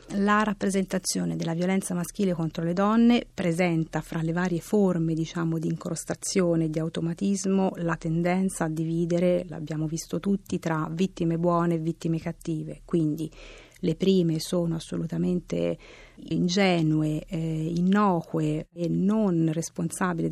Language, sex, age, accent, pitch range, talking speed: Italian, female, 40-59, native, 160-195 Hz, 125 wpm